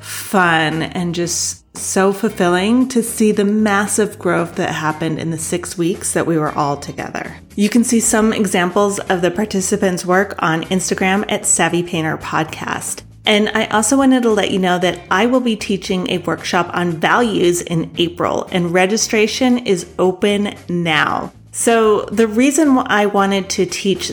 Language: English